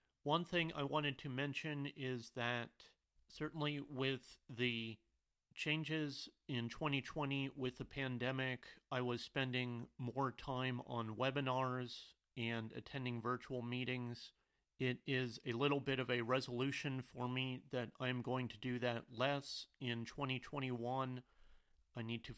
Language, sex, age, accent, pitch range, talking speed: English, male, 40-59, American, 115-135 Hz, 135 wpm